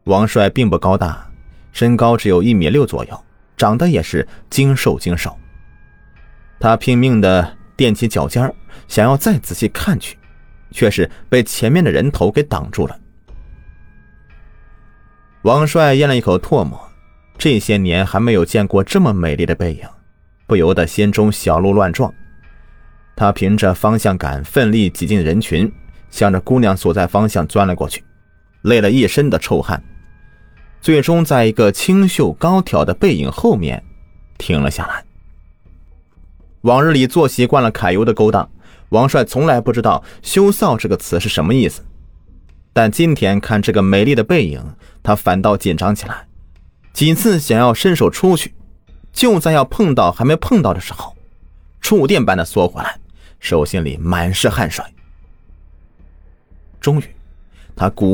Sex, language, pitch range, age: male, Chinese, 80-120 Hz, 30-49